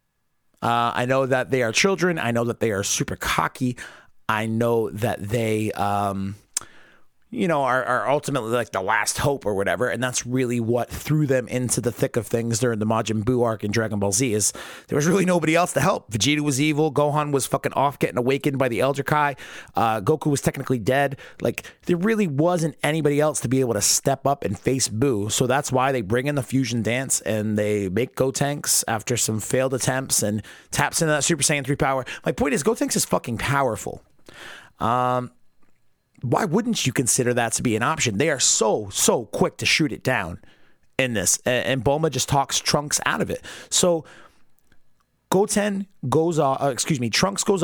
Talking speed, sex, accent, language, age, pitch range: 205 wpm, male, American, English, 30-49, 115-145 Hz